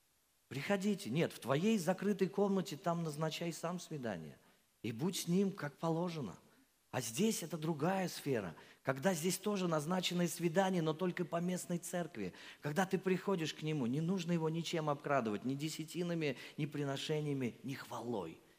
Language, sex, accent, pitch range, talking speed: Russian, male, native, 145-200 Hz, 150 wpm